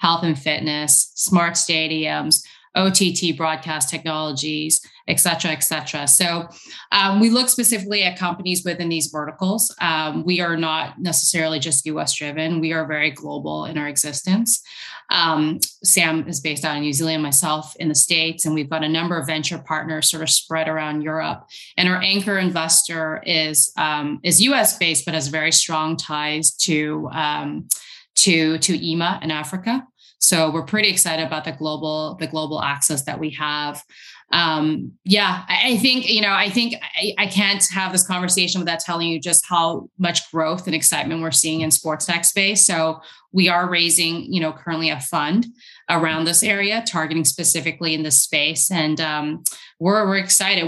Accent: American